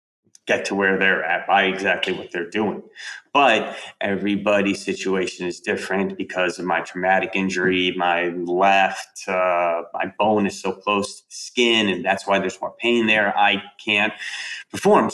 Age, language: 30-49, English